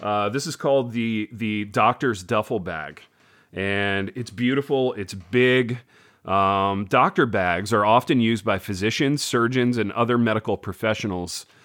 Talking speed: 140 wpm